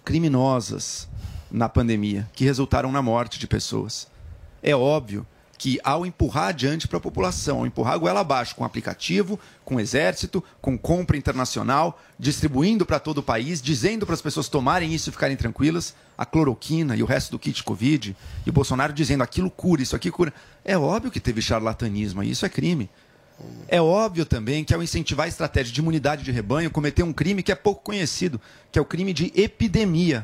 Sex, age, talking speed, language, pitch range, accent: male, 40-59, 190 wpm, Portuguese, 125-165 Hz, Brazilian